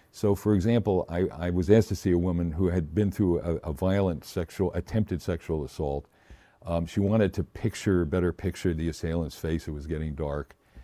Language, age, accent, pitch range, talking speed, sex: English, 50-69, American, 80-95 Hz, 200 wpm, male